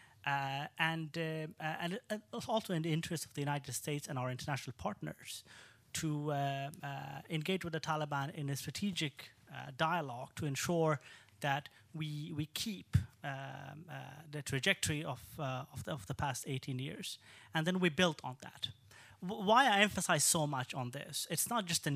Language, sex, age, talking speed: English, male, 30-49, 180 wpm